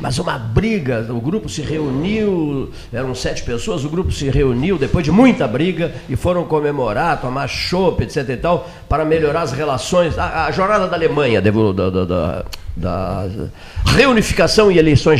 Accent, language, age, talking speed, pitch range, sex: Brazilian, Portuguese, 50-69, 165 wpm, 110-165 Hz, male